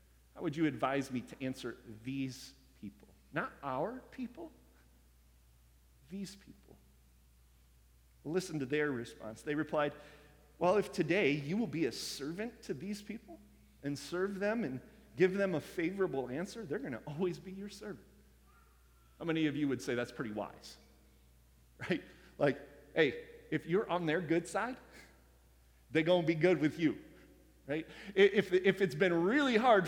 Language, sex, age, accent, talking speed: English, male, 40-59, American, 155 wpm